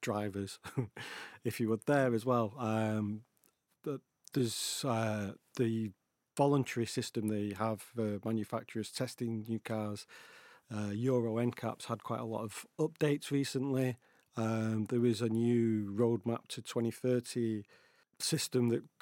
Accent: British